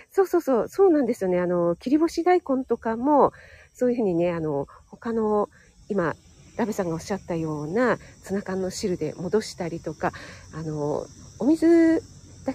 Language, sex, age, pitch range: Japanese, female, 40-59, 185-295 Hz